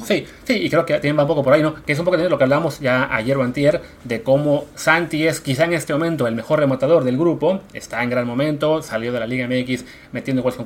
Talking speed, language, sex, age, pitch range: 270 wpm, Spanish, male, 30-49, 125-165 Hz